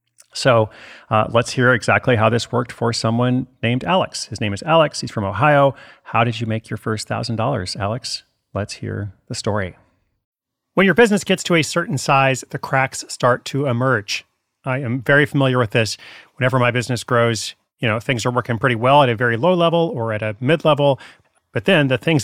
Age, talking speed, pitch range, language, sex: 30-49, 200 wpm, 115-145 Hz, English, male